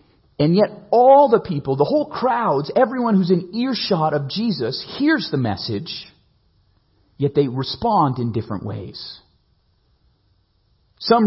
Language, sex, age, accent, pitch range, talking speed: English, male, 40-59, American, 120-165 Hz, 130 wpm